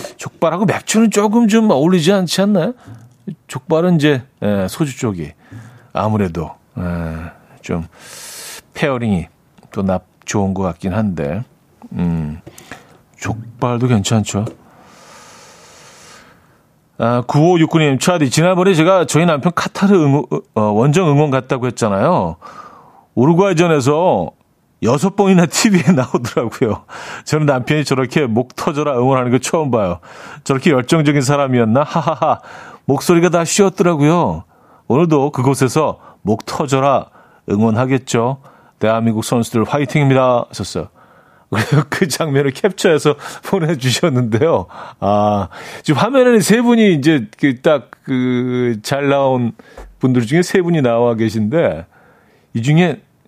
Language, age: Korean, 40-59